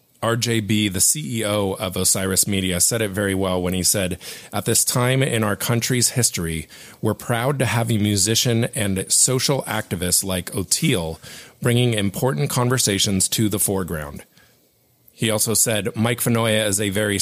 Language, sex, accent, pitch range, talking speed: English, male, American, 100-120 Hz, 155 wpm